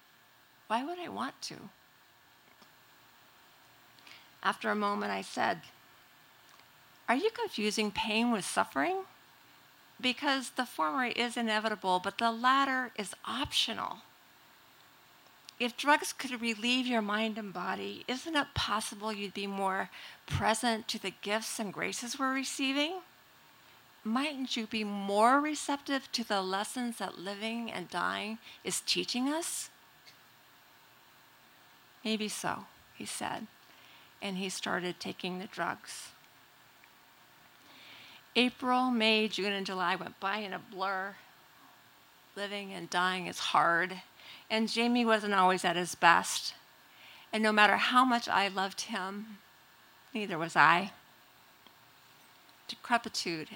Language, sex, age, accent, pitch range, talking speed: English, female, 50-69, American, 190-245 Hz, 120 wpm